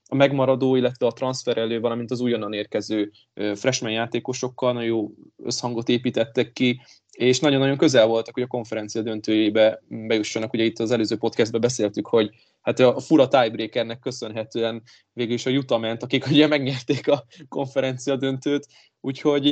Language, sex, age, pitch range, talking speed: Hungarian, male, 20-39, 110-130 Hz, 150 wpm